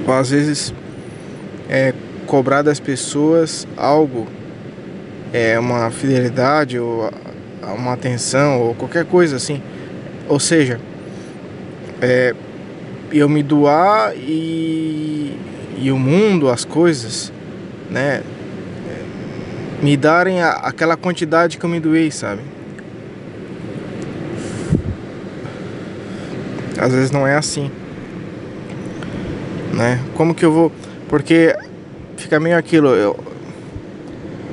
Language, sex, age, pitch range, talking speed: Portuguese, male, 20-39, 130-165 Hz, 95 wpm